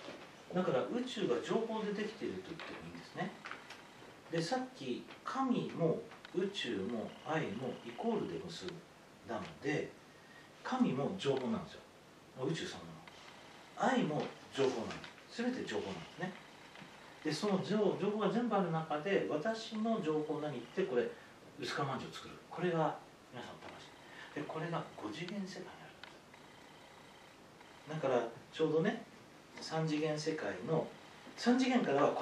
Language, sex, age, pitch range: English, male, 40-59, 150-210 Hz